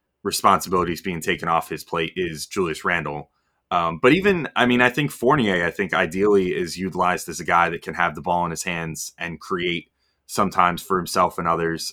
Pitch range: 85-100 Hz